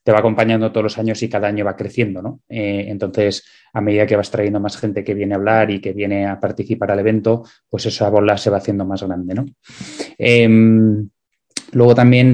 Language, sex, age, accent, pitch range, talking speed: Spanish, male, 20-39, Spanish, 100-110 Hz, 210 wpm